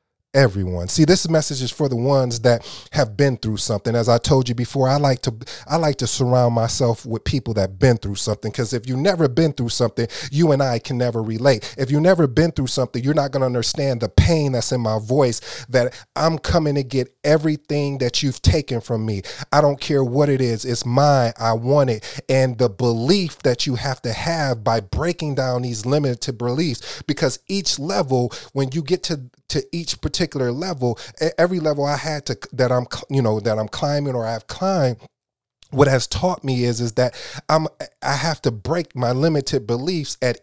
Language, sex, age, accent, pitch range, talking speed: English, male, 30-49, American, 120-150 Hz, 210 wpm